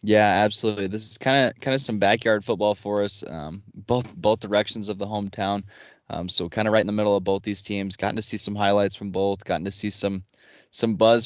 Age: 20-39